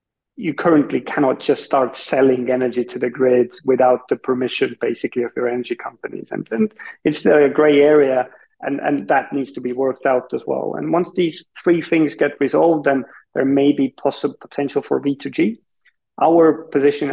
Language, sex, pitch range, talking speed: Finnish, male, 125-140 Hz, 180 wpm